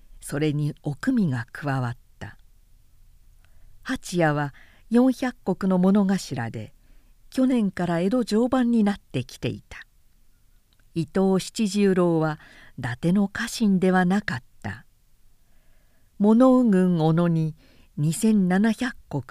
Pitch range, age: 130-210 Hz, 50-69